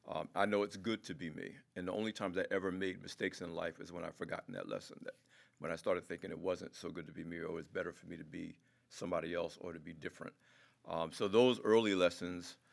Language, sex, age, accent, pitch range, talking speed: English, male, 50-69, American, 85-100 Hz, 260 wpm